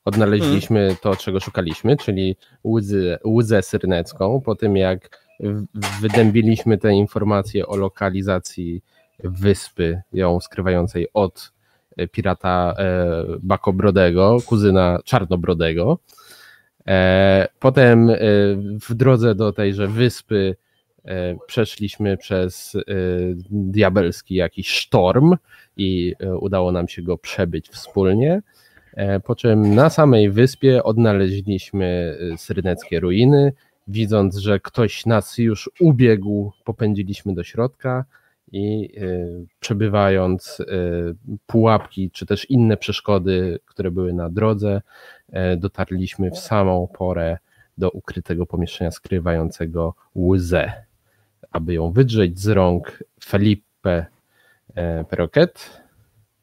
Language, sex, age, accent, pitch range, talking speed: Polish, male, 20-39, native, 90-110 Hz, 90 wpm